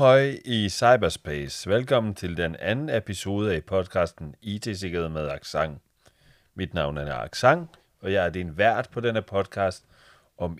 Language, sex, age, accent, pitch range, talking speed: Danish, male, 30-49, native, 85-105 Hz, 145 wpm